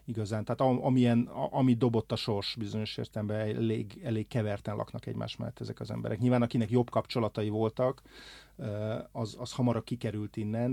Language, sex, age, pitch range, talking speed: Hungarian, male, 30-49, 110-125 Hz, 155 wpm